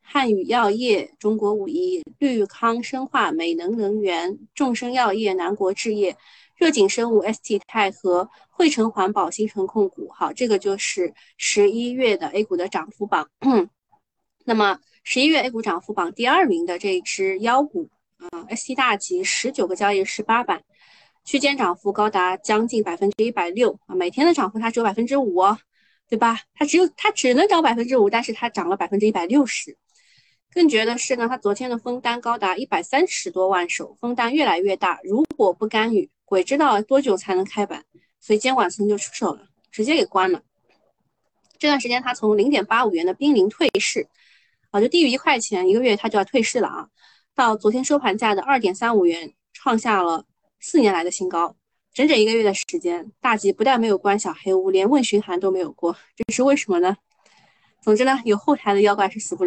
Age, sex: 20-39, female